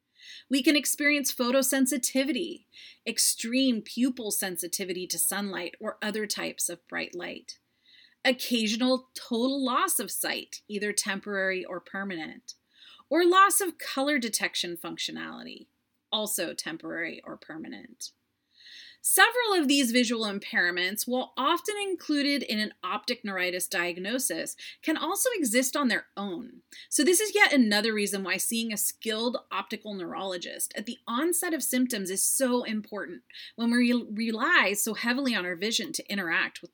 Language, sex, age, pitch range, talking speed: English, female, 30-49, 195-285 Hz, 135 wpm